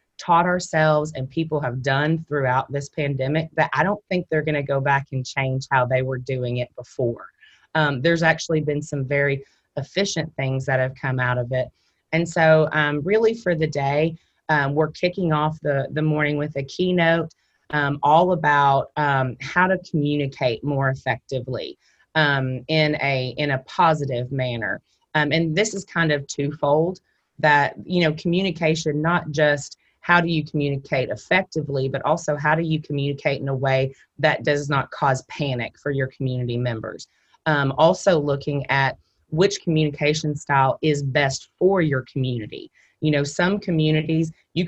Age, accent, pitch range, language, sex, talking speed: 30-49, American, 135-160 Hz, English, female, 170 wpm